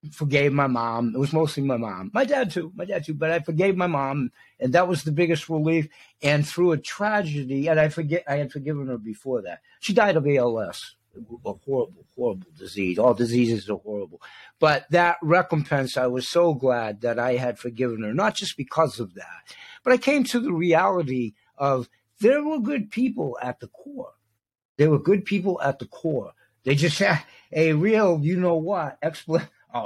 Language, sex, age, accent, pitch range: Chinese, male, 60-79, American, 135-205 Hz